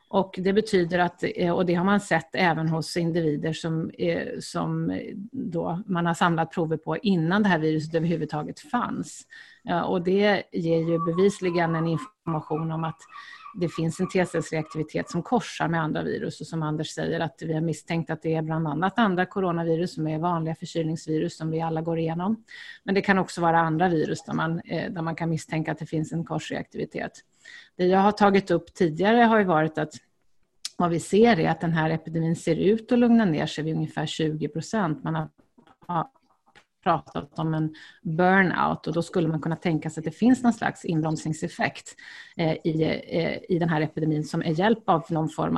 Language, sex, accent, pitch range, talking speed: Swedish, female, native, 160-190 Hz, 185 wpm